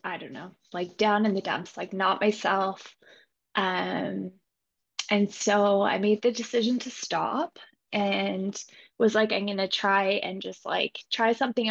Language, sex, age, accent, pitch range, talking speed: English, female, 20-39, American, 195-220 Hz, 165 wpm